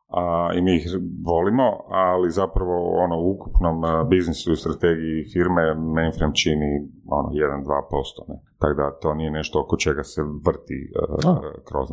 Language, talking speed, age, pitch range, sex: Croatian, 145 wpm, 40-59, 80-100 Hz, male